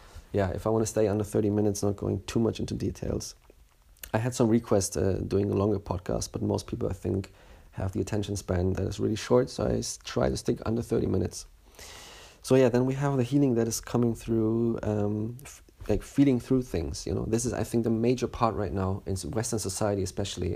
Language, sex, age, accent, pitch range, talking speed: English, male, 30-49, German, 95-110 Hz, 225 wpm